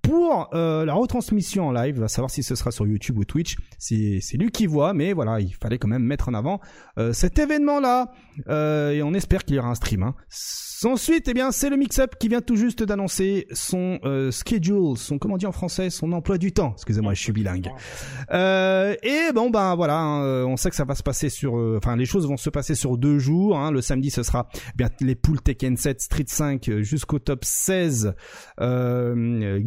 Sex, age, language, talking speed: male, 30-49, French, 220 wpm